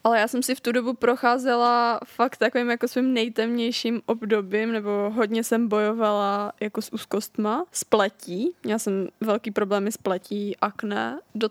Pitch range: 220-235 Hz